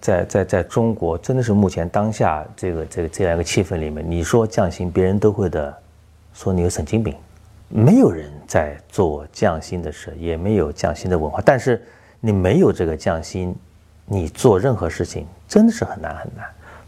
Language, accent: Chinese, native